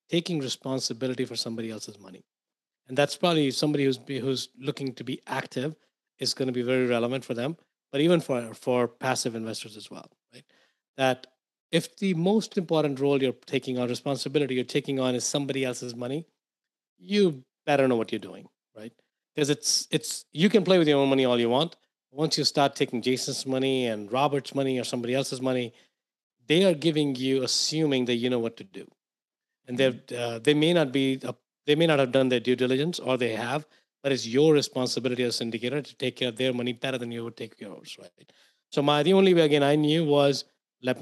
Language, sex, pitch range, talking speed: English, male, 125-145 Hz, 210 wpm